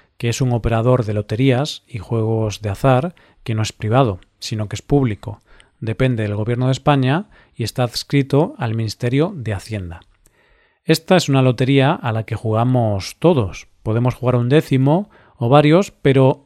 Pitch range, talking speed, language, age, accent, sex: 115-145 Hz, 170 wpm, Spanish, 40-59, Spanish, male